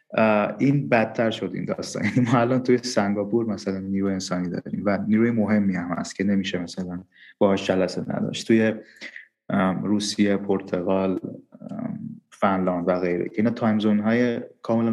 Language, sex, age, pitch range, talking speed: Persian, male, 30-49, 105-130 Hz, 145 wpm